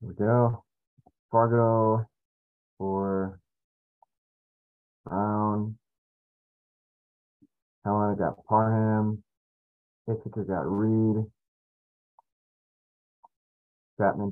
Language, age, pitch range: English, 40-59, 85-105 Hz